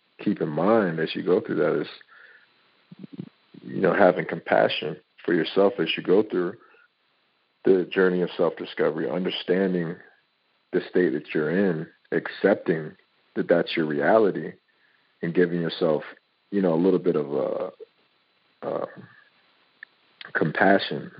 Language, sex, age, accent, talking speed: English, male, 50-69, American, 135 wpm